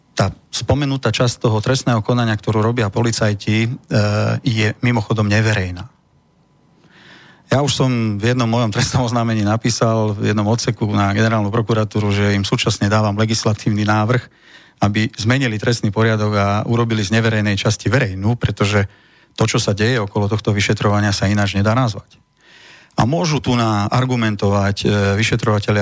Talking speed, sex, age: 140 wpm, male, 40-59